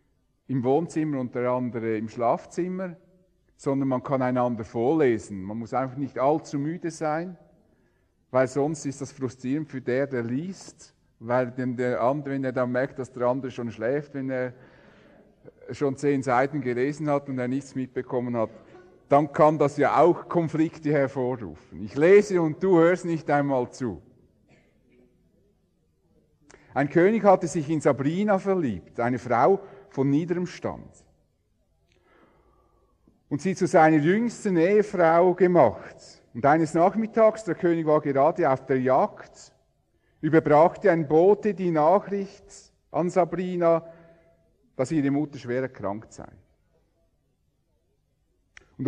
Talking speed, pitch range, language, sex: 135 wpm, 125-175 Hz, English, male